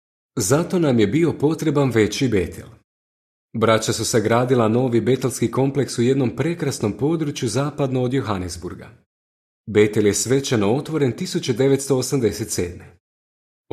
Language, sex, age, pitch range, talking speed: Croatian, male, 30-49, 110-145 Hz, 110 wpm